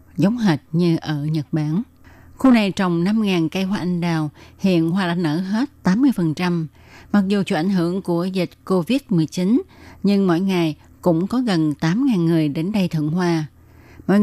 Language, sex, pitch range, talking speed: Vietnamese, female, 155-195 Hz, 175 wpm